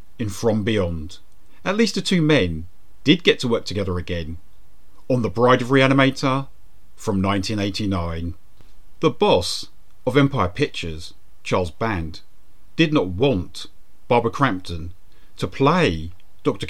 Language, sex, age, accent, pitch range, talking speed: English, male, 40-59, British, 90-135 Hz, 130 wpm